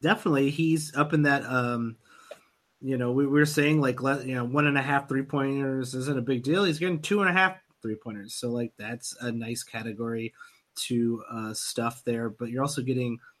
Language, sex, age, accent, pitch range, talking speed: English, male, 30-49, American, 125-160 Hz, 215 wpm